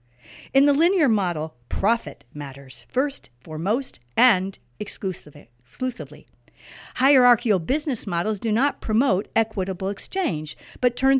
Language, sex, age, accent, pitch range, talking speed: English, female, 50-69, American, 155-250 Hz, 105 wpm